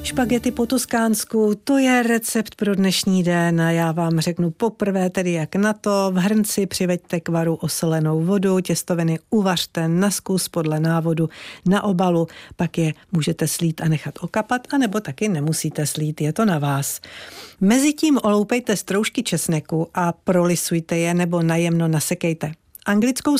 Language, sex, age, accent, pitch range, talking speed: Czech, female, 50-69, native, 165-205 Hz, 150 wpm